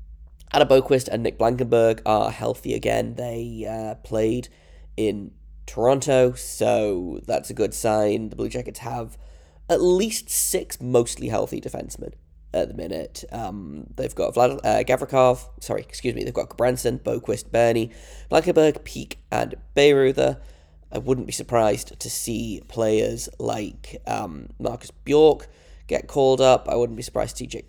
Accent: British